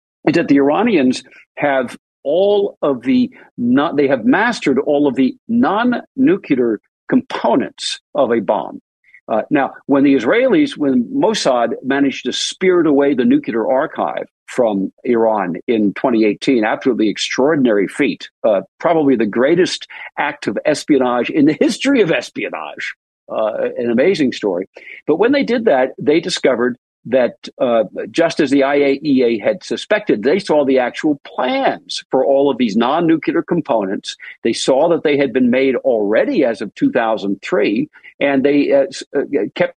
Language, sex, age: English, male, 50-69